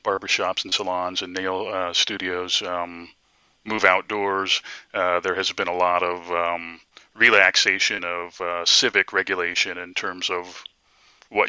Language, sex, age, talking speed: English, male, 30-49, 140 wpm